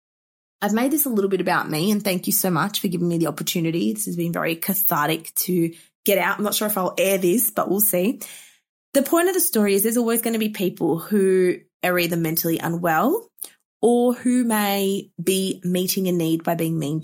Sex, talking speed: female, 220 wpm